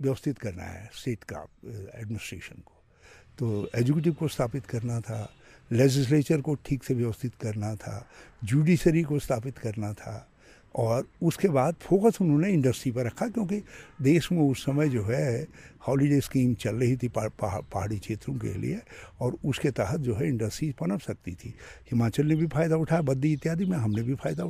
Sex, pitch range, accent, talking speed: male, 115-160 Hz, native, 175 wpm